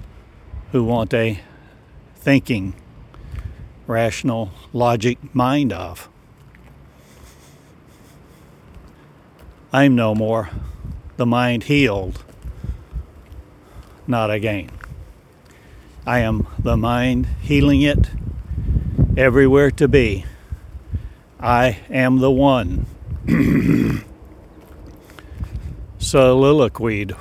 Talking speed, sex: 70 wpm, male